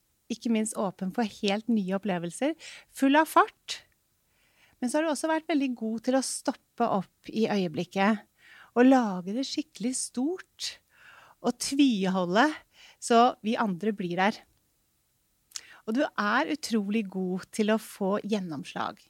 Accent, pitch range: Swedish, 200-265 Hz